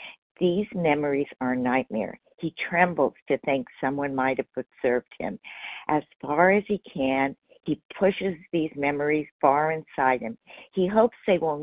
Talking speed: 150 wpm